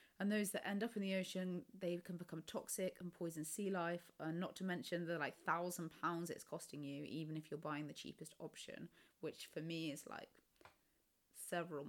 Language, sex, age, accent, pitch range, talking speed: English, female, 20-39, British, 160-200 Hz, 200 wpm